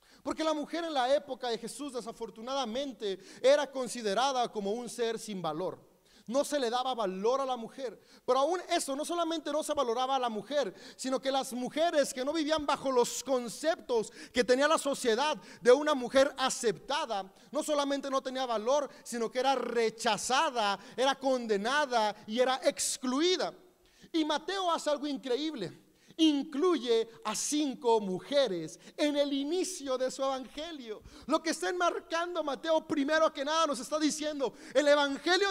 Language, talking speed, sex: Spanish, 160 wpm, male